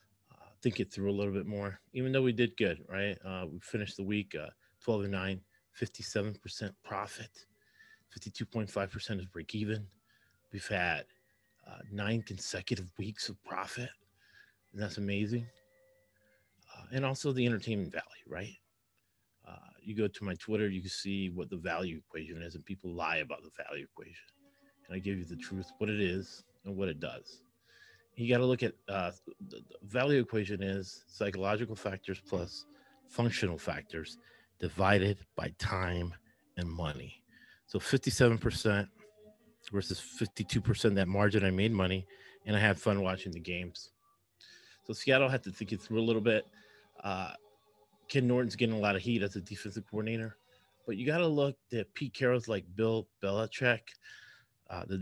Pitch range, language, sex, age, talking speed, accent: 95-120 Hz, English, male, 30-49, 165 wpm, American